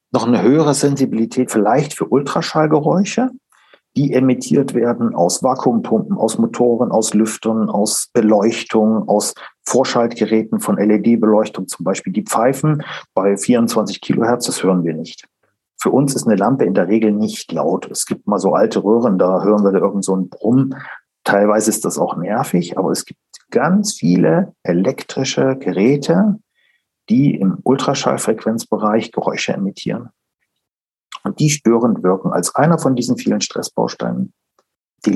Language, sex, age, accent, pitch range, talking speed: German, male, 40-59, German, 105-135 Hz, 145 wpm